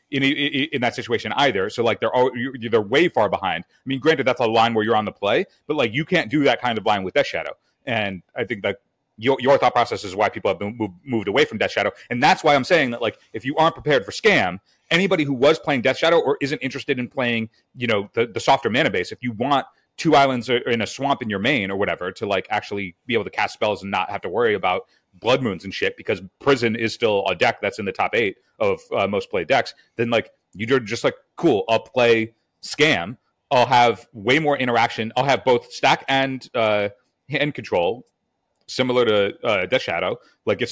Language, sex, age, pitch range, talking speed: English, male, 30-49, 115-140 Hz, 240 wpm